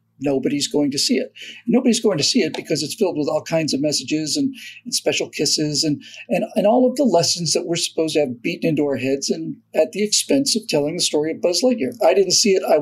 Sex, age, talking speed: male, 50-69, 255 wpm